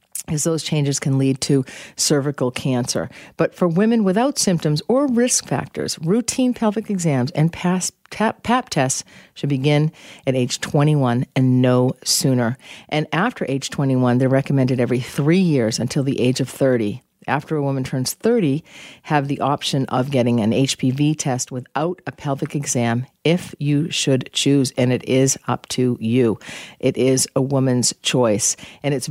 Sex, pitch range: female, 125-150 Hz